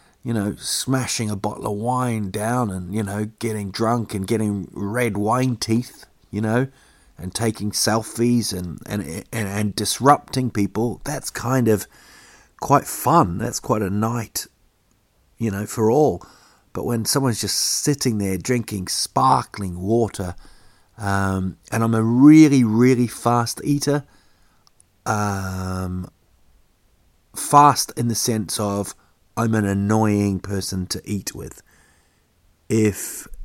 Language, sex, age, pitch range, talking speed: English, male, 30-49, 95-120 Hz, 130 wpm